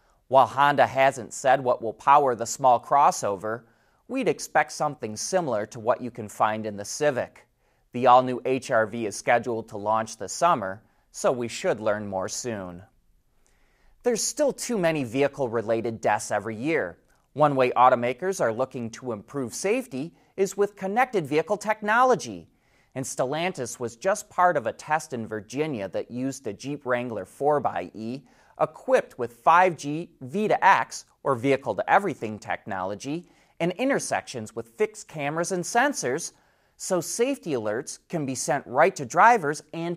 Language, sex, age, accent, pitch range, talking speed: English, male, 30-49, American, 115-175 Hz, 155 wpm